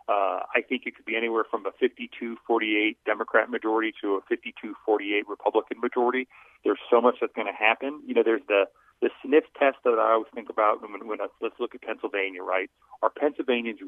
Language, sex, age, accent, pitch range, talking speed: English, male, 40-59, American, 110-165 Hz, 195 wpm